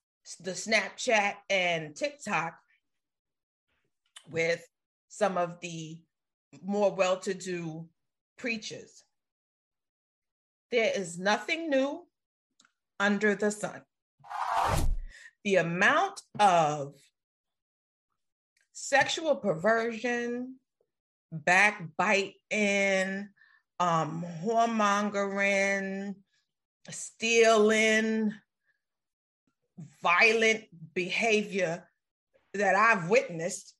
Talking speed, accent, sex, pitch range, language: 55 wpm, American, female, 185-260 Hz, English